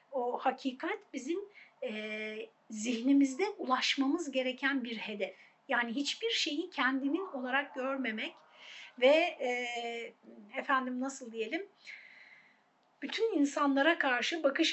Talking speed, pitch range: 100 wpm, 235-310 Hz